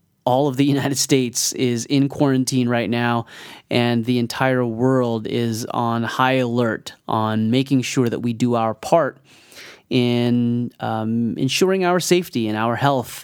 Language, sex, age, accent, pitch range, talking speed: English, male, 30-49, American, 120-140 Hz, 155 wpm